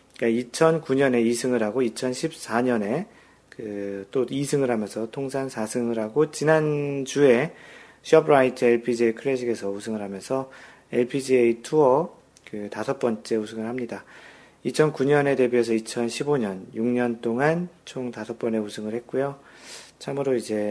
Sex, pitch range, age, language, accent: male, 115-140 Hz, 40-59, Korean, native